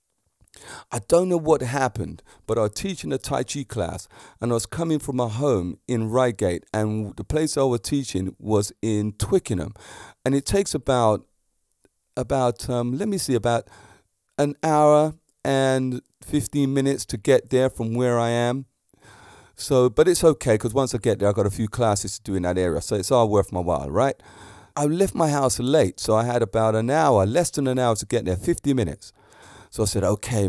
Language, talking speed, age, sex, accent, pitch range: English, 205 wpm, 40-59, male, British, 105-135 Hz